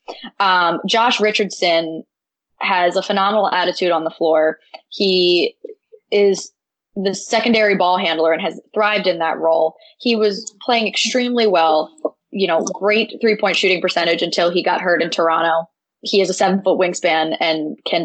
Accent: American